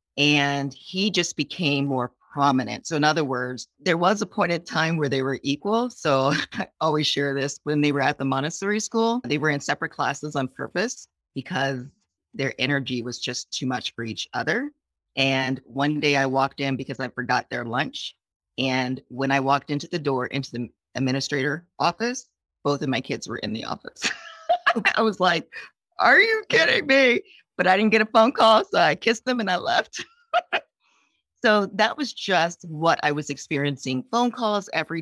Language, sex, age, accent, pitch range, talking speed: English, female, 40-59, American, 135-180 Hz, 190 wpm